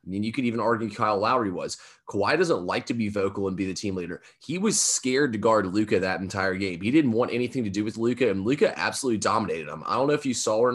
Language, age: English, 20-39